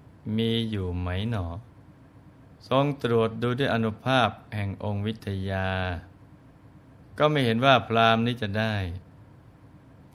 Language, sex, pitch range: Thai, male, 105-130 Hz